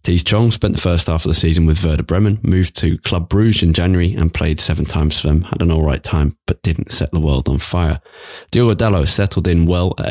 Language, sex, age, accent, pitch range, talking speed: English, male, 20-39, British, 80-100 Hz, 245 wpm